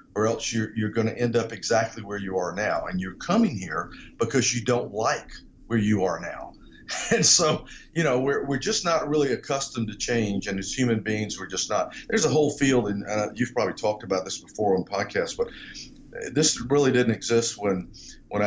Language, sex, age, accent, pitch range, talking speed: English, male, 50-69, American, 100-125 Hz, 210 wpm